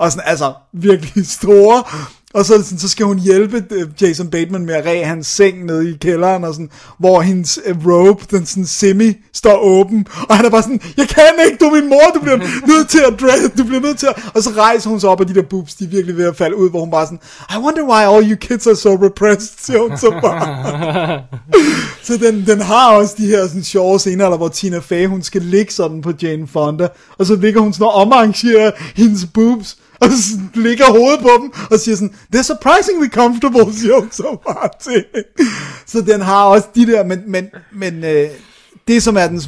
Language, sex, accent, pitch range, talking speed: Danish, male, native, 165-215 Hz, 220 wpm